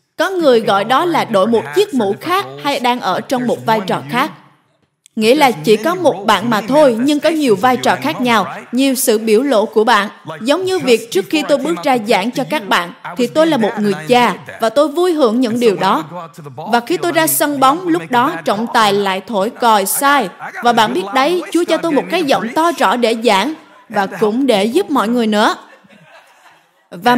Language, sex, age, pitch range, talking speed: Vietnamese, female, 20-39, 220-295 Hz, 220 wpm